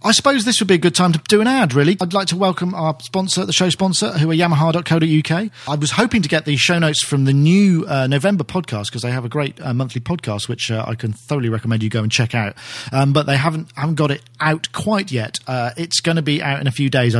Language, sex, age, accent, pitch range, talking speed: English, male, 40-59, British, 125-165 Hz, 270 wpm